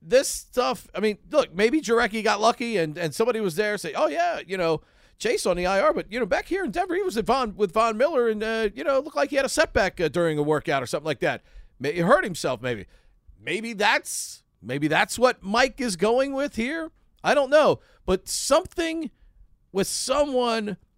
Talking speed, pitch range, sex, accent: 220 wpm, 140-230 Hz, male, American